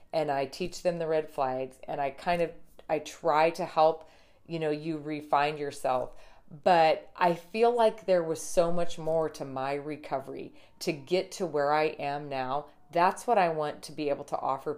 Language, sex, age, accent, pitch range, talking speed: English, female, 40-59, American, 145-175 Hz, 195 wpm